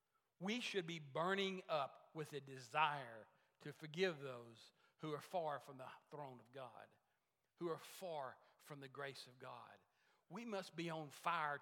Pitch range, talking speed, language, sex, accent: 135-165 Hz, 165 wpm, English, male, American